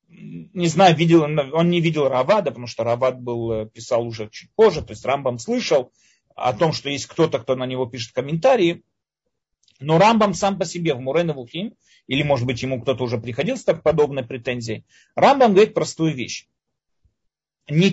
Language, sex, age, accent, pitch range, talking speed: Russian, male, 40-59, native, 150-240 Hz, 170 wpm